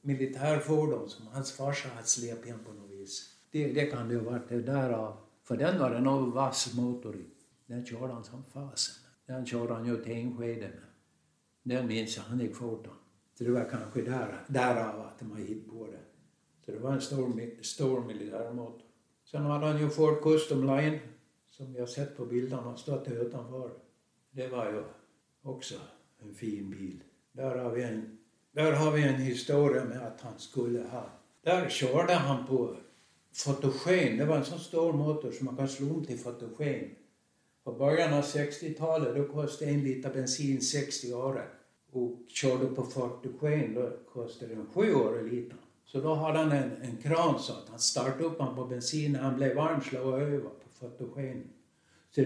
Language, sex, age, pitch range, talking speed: English, male, 60-79, 120-145 Hz, 185 wpm